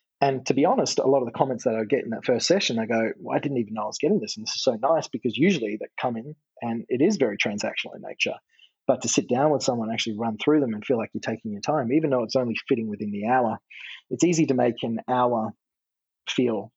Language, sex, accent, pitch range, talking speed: English, male, Australian, 110-135 Hz, 270 wpm